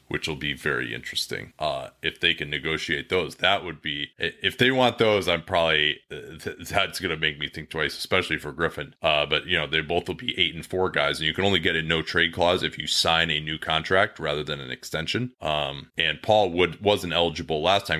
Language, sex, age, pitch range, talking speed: English, male, 30-49, 75-95 Hz, 225 wpm